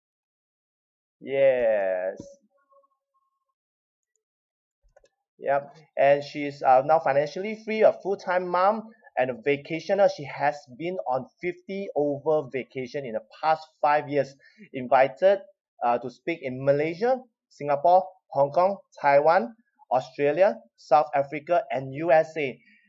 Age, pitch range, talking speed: 20-39, 135-195 Hz, 105 wpm